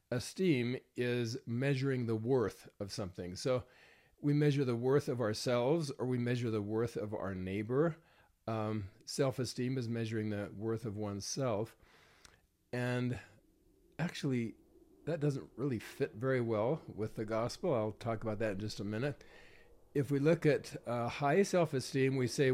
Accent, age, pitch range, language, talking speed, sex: American, 40-59, 110-135 Hz, English, 155 wpm, male